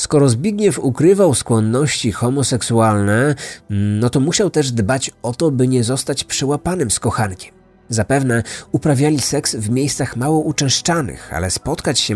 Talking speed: 140 wpm